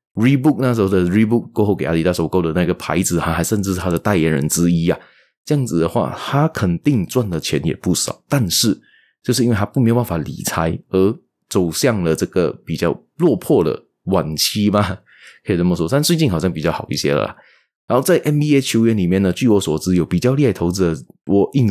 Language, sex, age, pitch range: Chinese, male, 20-39, 85-115 Hz